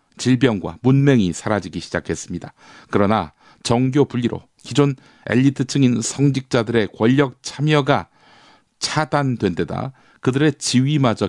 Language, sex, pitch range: Korean, male, 105-140 Hz